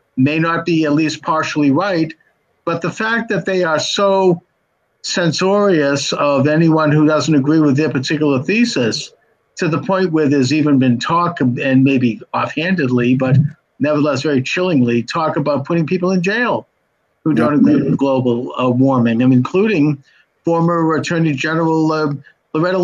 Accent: American